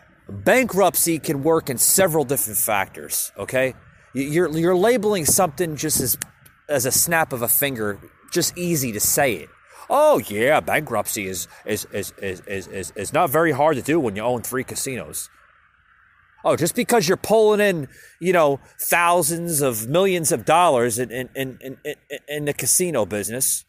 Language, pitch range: English, 110-160 Hz